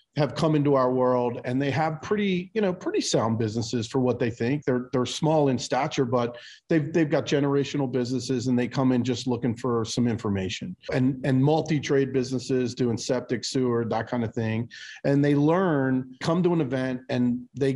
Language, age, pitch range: English, 40-59, 115-140 Hz